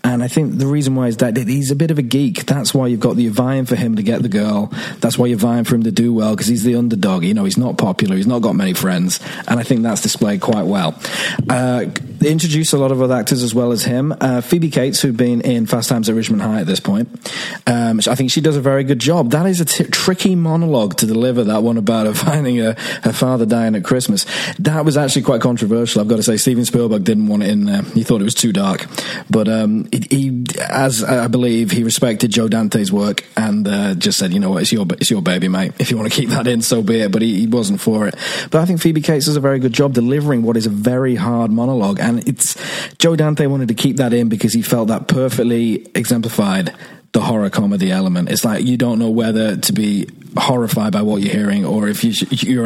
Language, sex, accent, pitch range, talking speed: English, male, British, 115-175 Hz, 260 wpm